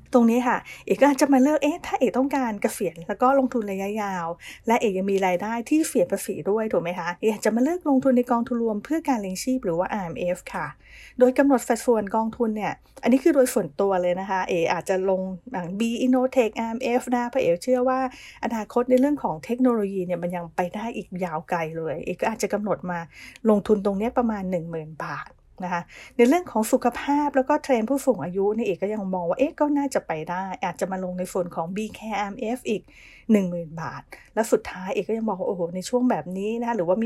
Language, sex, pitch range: English, female, 185-255 Hz